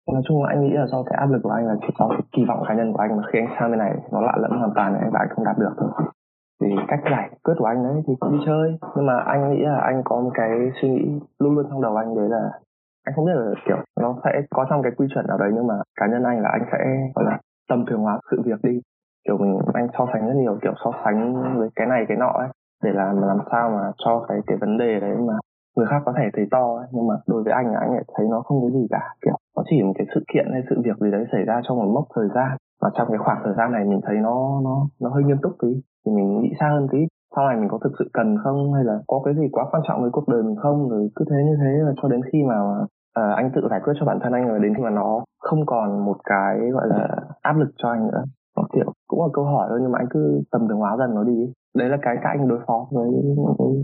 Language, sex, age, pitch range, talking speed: Vietnamese, male, 20-39, 110-140 Hz, 300 wpm